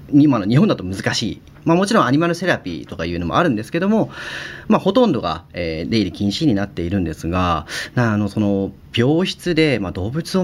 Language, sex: Japanese, male